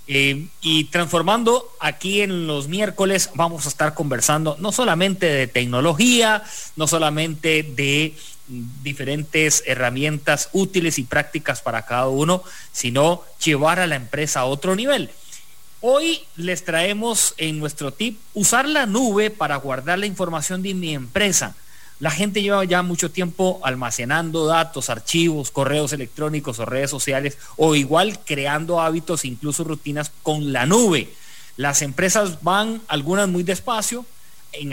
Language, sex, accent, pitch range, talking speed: English, male, Mexican, 140-185 Hz, 140 wpm